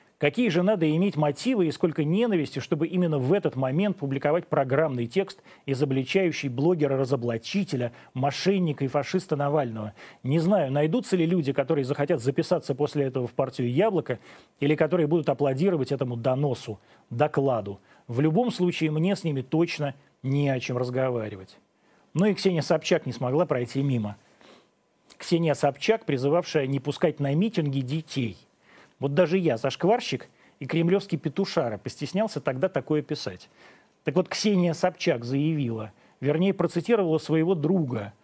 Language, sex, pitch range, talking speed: Russian, male, 135-180 Hz, 140 wpm